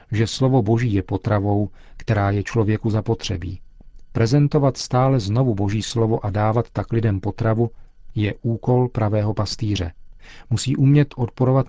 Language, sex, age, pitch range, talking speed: Czech, male, 40-59, 105-125 Hz, 135 wpm